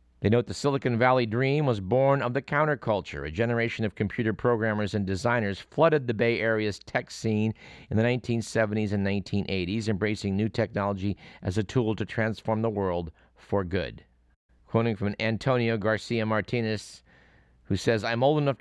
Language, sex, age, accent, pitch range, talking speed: English, male, 50-69, American, 100-120 Hz, 165 wpm